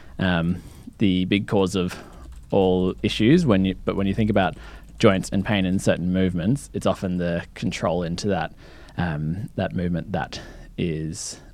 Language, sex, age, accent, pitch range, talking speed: English, male, 20-39, Australian, 90-105 Hz, 160 wpm